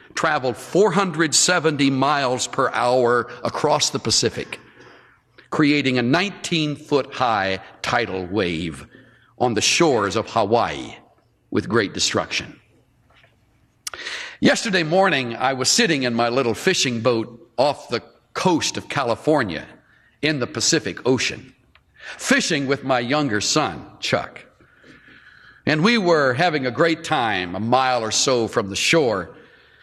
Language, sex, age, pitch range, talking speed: English, male, 50-69, 120-165 Hz, 120 wpm